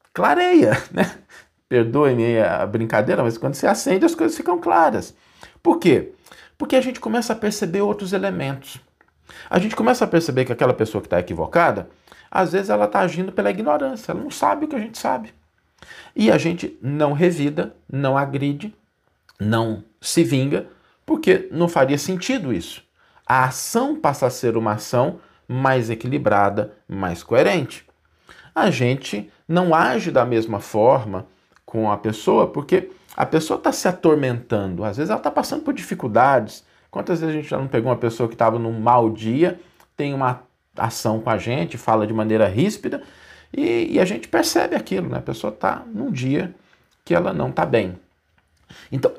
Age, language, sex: 40-59, Portuguese, male